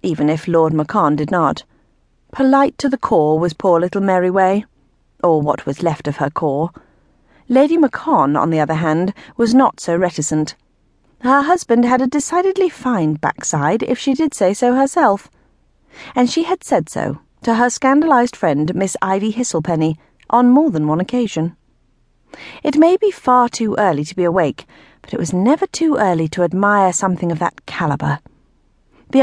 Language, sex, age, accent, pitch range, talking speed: English, female, 40-59, British, 160-245 Hz, 170 wpm